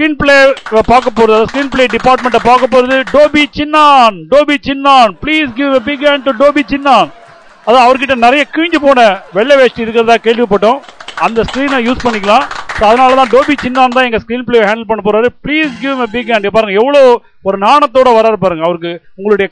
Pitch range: 215-265 Hz